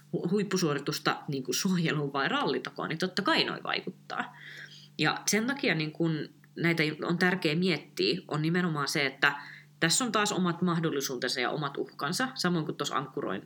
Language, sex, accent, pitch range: Finnish, female, native, 145-185 Hz